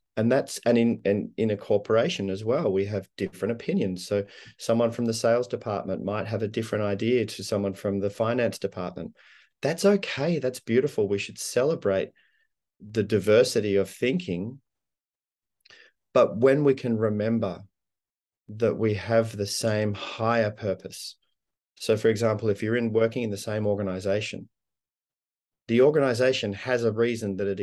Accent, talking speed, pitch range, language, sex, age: Australian, 155 wpm, 100-115 Hz, English, male, 30-49